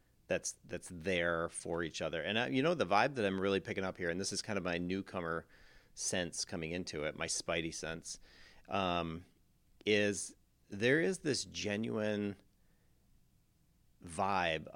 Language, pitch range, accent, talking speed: English, 85-105 Hz, American, 155 wpm